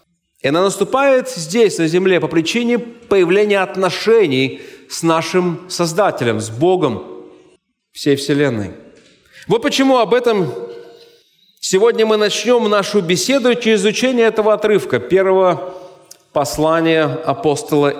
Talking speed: 110 wpm